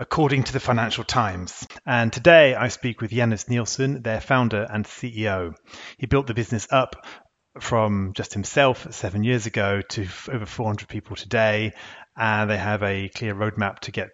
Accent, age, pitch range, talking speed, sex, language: British, 30-49, 100-120 Hz, 170 wpm, male, English